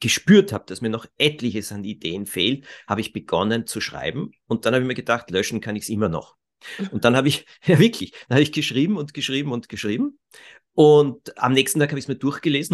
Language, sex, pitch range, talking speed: German, male, 115-150 Hz, 230 wpm